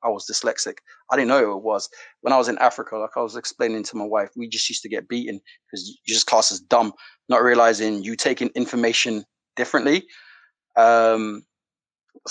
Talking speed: 195 wpm